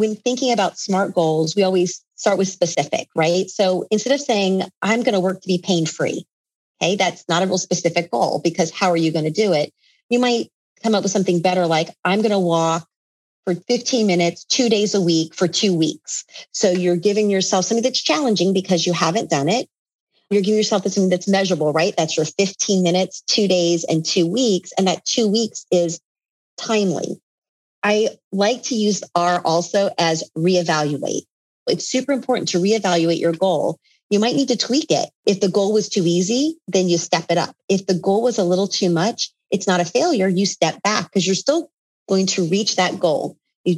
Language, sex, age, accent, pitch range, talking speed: English, female, 40-59, American, 170-210 Hz, 205 wpm